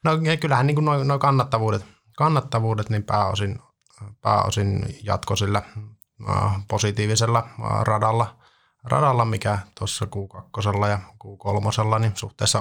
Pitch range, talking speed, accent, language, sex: 100-115 Hz, 105 wpm, native, Finnish, male